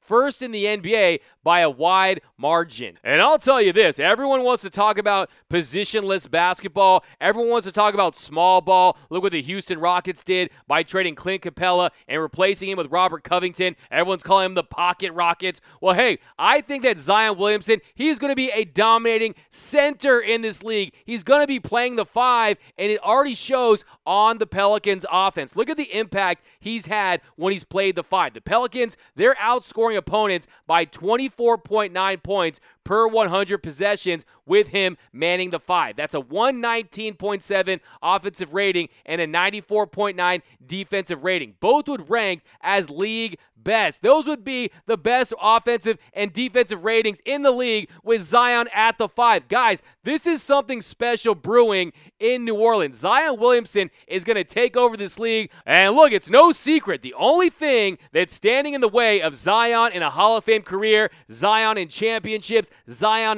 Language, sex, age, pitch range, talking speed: English, male, 30-49, 185-235 Hz, 175 wpm